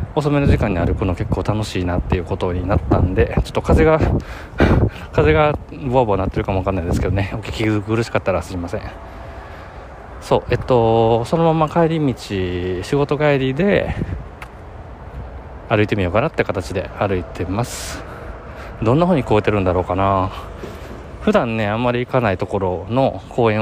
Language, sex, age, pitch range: Japanese, male, 20-39, 90-115 Hz